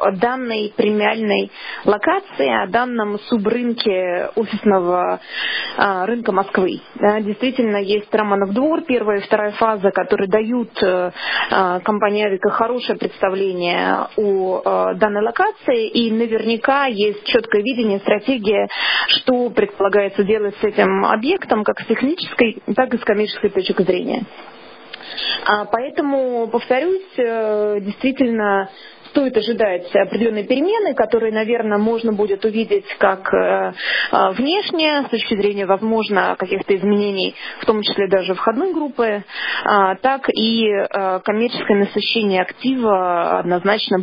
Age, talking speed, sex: 20-39, 110 wpm, female